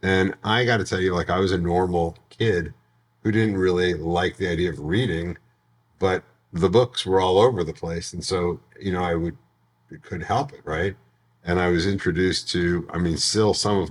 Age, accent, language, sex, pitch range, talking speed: 50-69, American, English, male, 75-90 Hz, 210 wpm